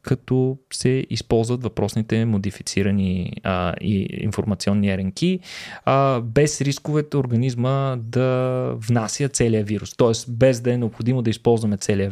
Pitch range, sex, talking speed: 110-140 Hz, male, 125 wpm